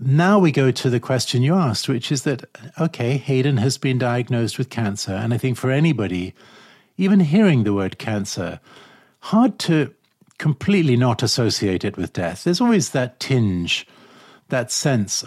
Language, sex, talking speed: English, male, 165 wpm